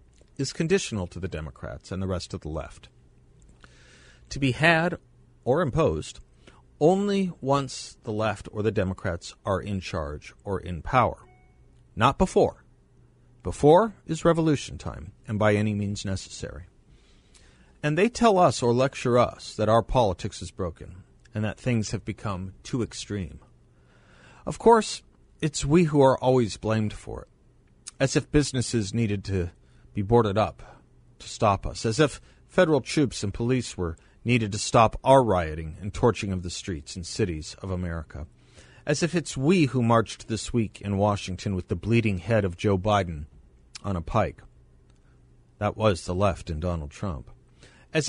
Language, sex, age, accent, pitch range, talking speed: English, male, 50-69, American, 90-125 Hz, 160 wpm